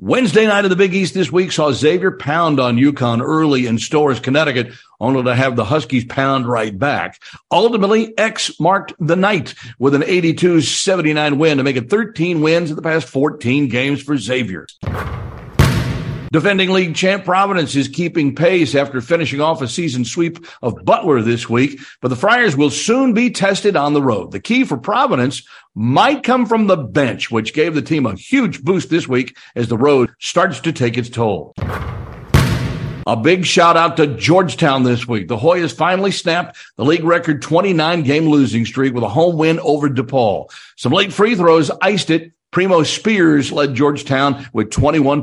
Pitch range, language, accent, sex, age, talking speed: 135-175 Hz, English, American, male, 50-69, 175 wpm